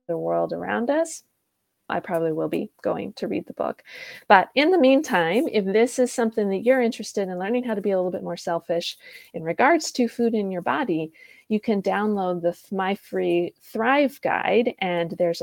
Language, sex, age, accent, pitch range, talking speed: English, female, 30-49, American, 180-245 Hz, 200 wpm